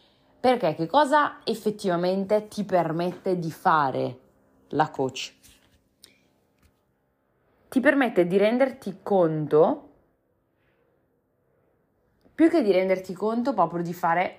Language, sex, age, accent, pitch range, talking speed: Italian, female, 20-39, native, 140-185 Hz, 95 wpm